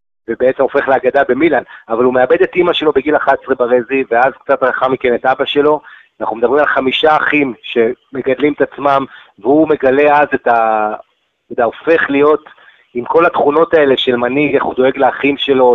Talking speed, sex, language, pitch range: 170 wpm, male, English, 125-150 Hz